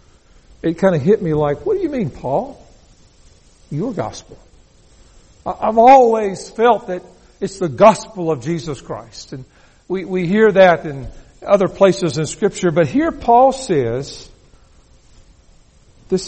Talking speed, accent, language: 140 wpm, American, English